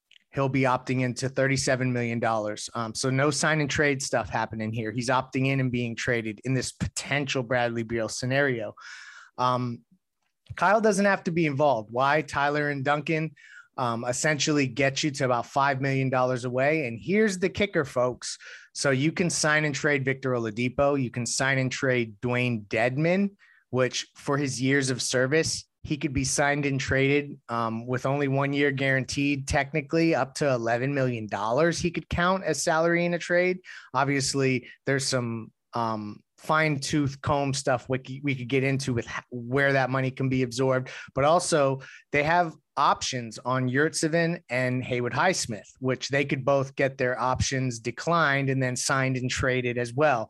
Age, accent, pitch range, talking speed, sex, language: 30-49, American, 125-145 Hz, 170 wpm, male, English